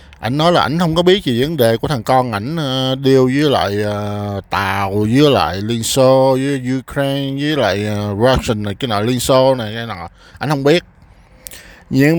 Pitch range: 115-155 Hz